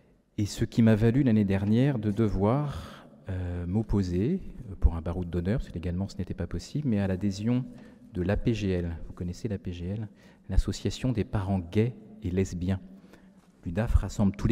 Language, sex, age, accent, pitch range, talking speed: French, male, 40-59, French, 90-110 Hz, 160 wpm